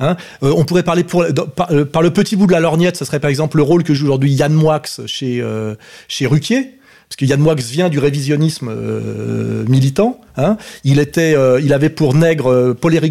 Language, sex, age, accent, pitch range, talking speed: French, male, 30-49, French, 140-170 Hz, 225 wpm